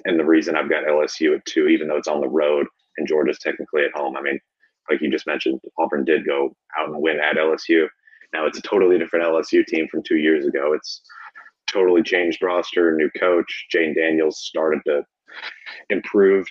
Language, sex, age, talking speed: English, male, 30-49, 200 wpm